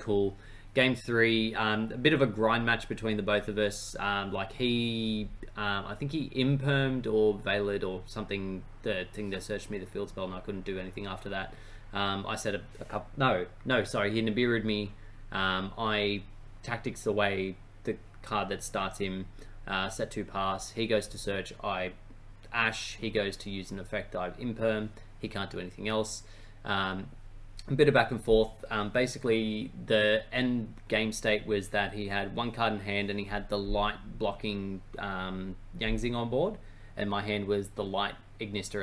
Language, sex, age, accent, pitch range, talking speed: English, male, 20-39, Australian, 100-110 Hz, 195 wpm